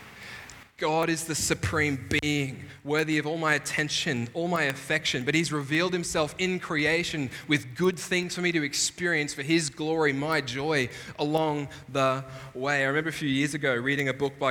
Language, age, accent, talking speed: English, 20-39, Australian, 180 wpm